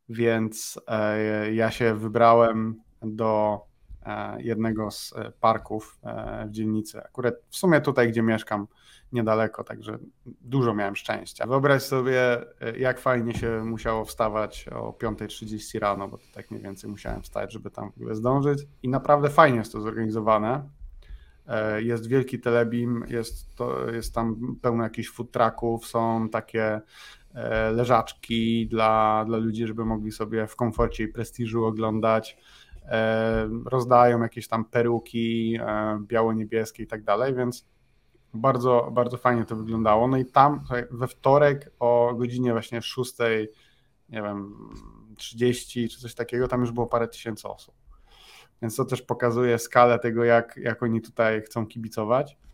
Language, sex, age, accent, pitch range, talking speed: Polish, male, 30-49, native, 110-120 Hz, 130 wpm